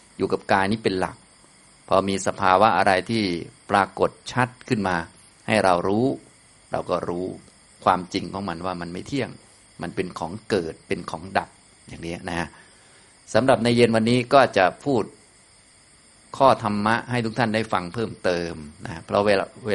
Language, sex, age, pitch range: Thai, male, 20-39, 90-110 Hz